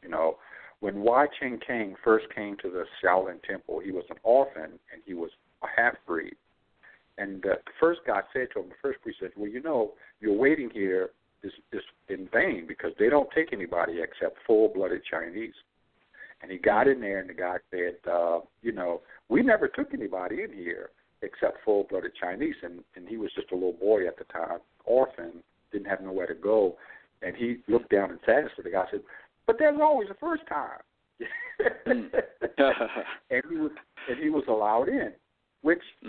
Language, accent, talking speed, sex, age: English, American, 190 wpm, male, 60-79